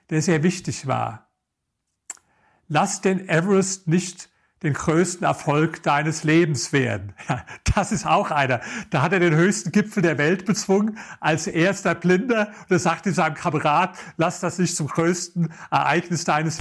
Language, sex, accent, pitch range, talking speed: German, male, German, 150-185 Hz, 150 wpm